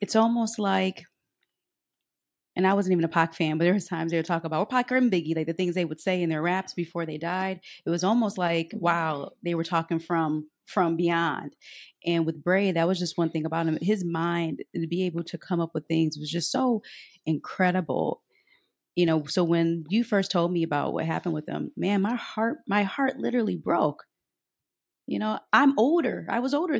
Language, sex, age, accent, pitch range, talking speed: English, female, 30-49, American, 170-215 Hz, 215 wpm